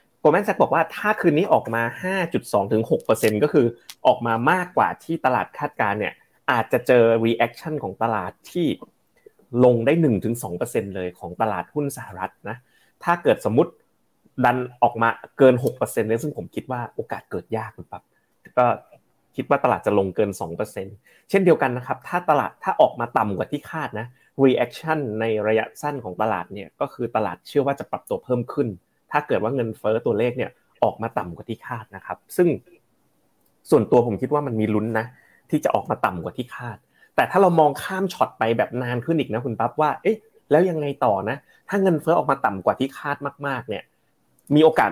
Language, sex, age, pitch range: Thai, male, 30-49, 110-150 Hz